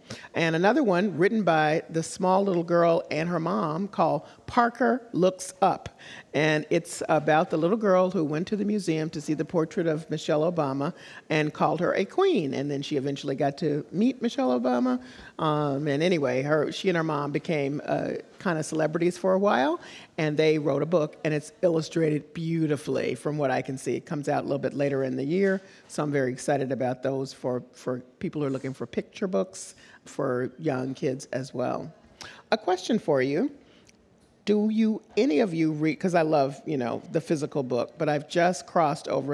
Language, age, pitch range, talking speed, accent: English, 40-59, 140-180 Hz, 200 wpm, American